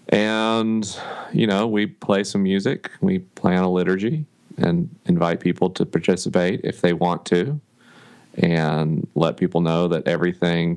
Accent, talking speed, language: American, 145 wpm, English